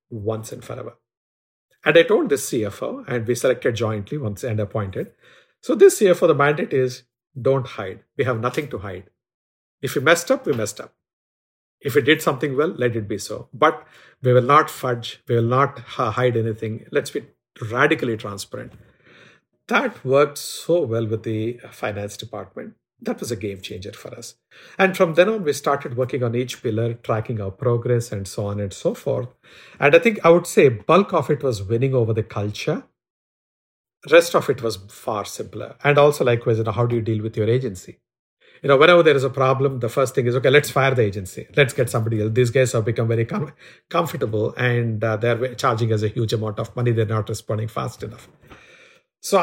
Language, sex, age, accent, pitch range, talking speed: English, male, 50-69, Indian, 110-140 Hz, 200 wpm